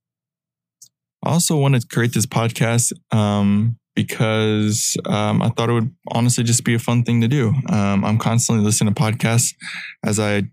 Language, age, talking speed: English, 20-39, 170 wpm